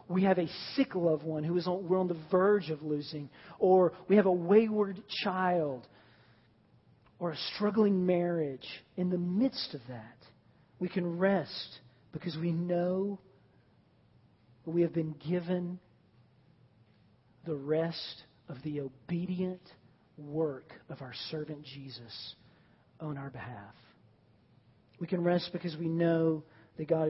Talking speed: 135 wpm